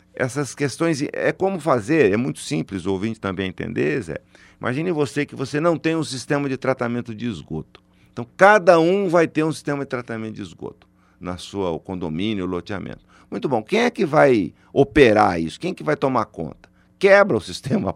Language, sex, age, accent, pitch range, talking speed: Portuguese, male, 50-69, Brazilian, 95-140 Hz, 195 wpm